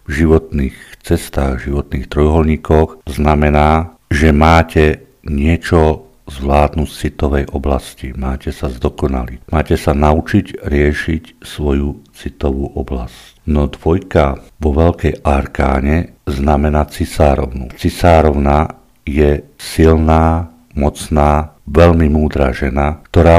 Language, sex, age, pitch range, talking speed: Slovak, male, 50-69, 70-85 Hz, 100 wpm